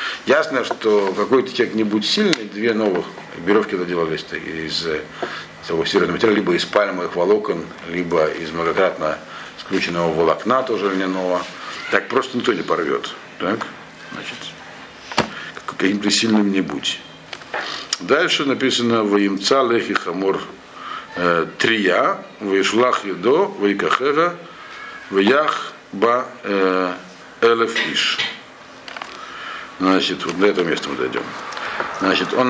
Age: 50-69